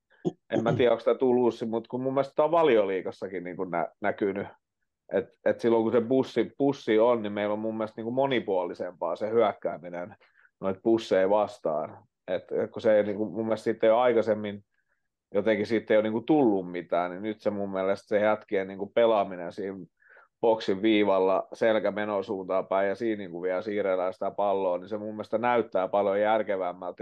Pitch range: 100-115 Hz